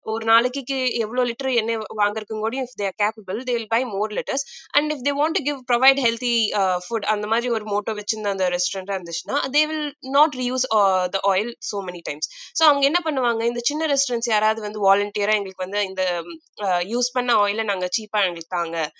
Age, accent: 20-39, native